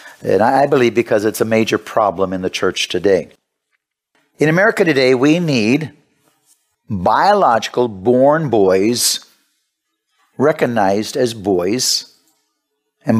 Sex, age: male, 50-69